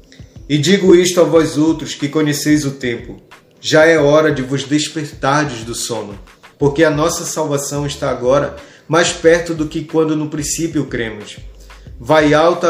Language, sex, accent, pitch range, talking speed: Portuguese, male, Brazilian, 135-165 Hz, 160 wpm